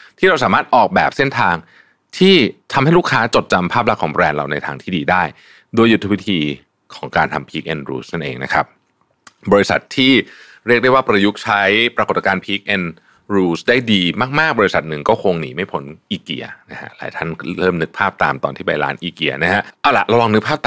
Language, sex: Thai, male